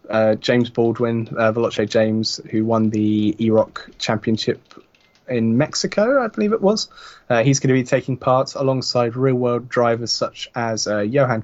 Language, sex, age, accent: English, male, 20-39, British